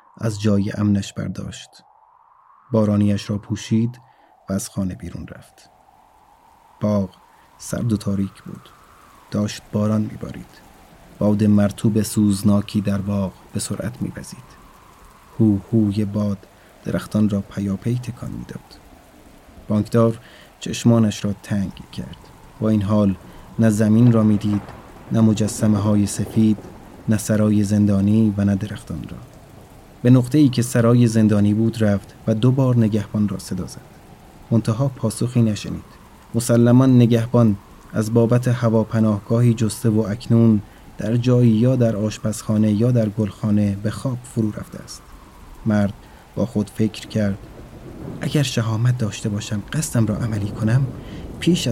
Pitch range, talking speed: 105-115 Hz, 130 wpm